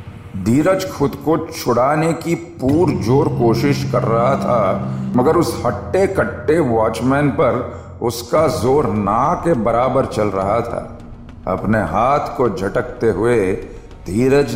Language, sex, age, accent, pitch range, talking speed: Hindi, male, 50-69, native, 100-135 Hz, 130 wpm